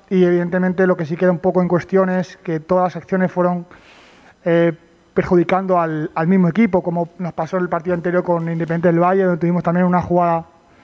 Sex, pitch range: male, 175-190 Hz